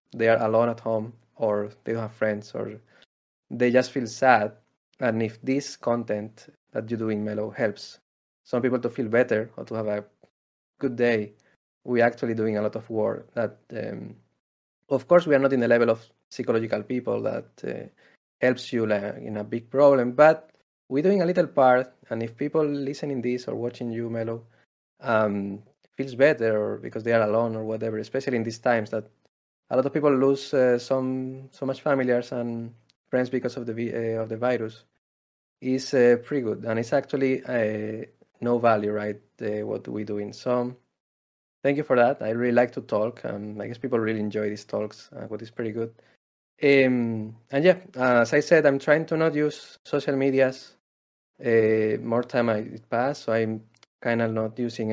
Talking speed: 195 wpm